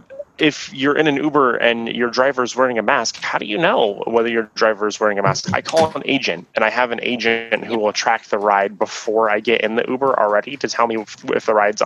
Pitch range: 105-120 Hz